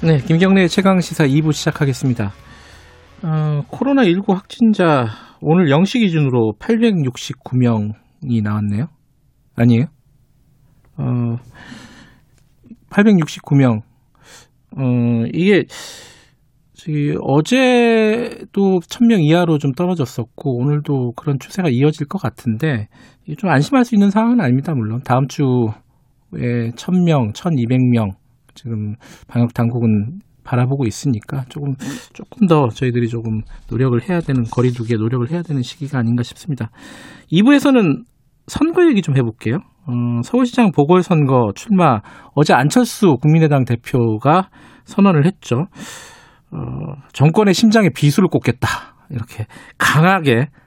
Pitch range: 120-175 Hz